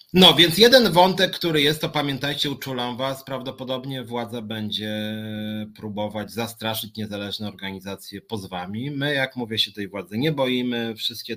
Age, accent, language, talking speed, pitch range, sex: 30-49, native, Polish, 145 wpm, 95-130 Hz, male